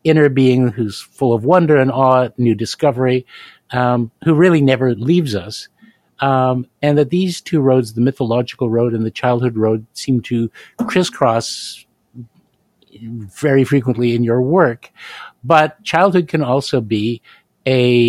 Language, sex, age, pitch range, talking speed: English, male, 50-69, 115-140 Hz, 145 wpm